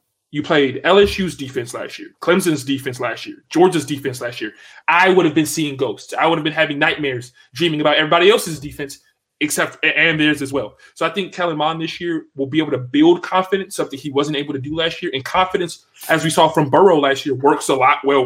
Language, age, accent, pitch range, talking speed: English, 20-39, American, 140-185 Hz, 225 wpm